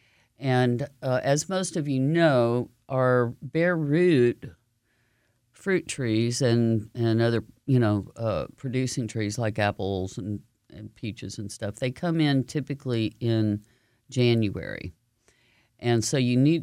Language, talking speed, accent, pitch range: English, 135 wpm, American, 110-145 Hz